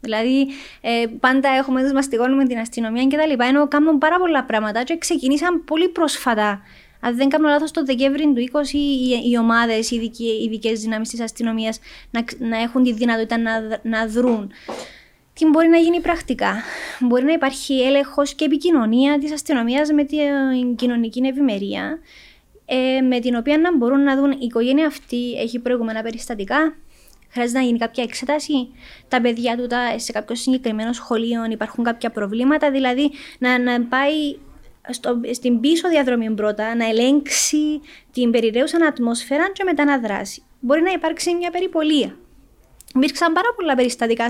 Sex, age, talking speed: female, 20-39, 155 wpm